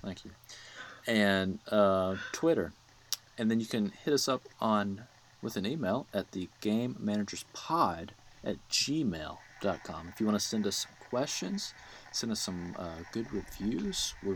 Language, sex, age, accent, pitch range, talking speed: English, male, 30-49, American, 100-130 Hz, 165 wpm